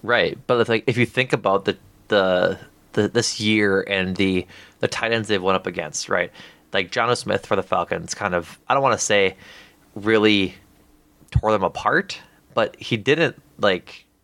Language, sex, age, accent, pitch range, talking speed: English, male, 20-39, American, 90-105 Hz, 185 wpm